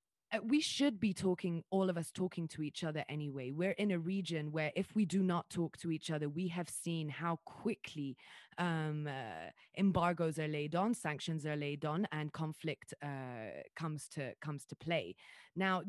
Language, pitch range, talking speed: English, 155-185 Hz, 190 wpm